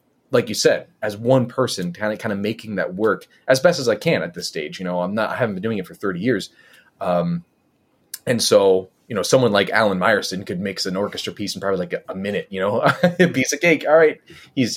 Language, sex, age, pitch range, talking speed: English, male, 30-49, 105-150 Hz, 250 wpm